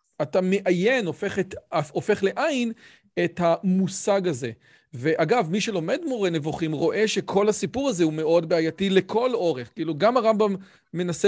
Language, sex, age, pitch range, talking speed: Hebrew, male, 40-59, 170-220 Hz, 145 wpm